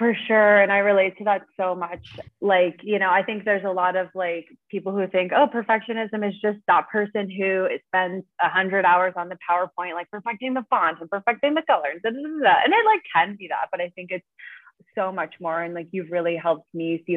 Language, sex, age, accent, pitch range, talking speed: English, female, 20-39, American, 165-200 Hz, 225 wpm